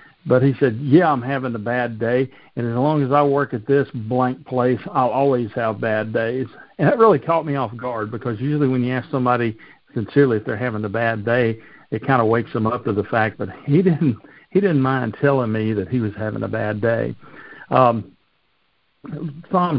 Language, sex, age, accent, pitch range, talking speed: English, male, 50-69, American, 115-145 Hz, 210 wpm